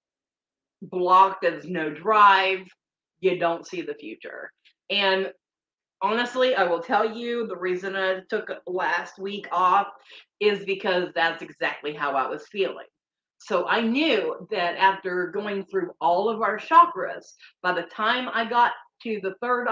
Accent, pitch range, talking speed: American, 180-225 Hz, 150 wpm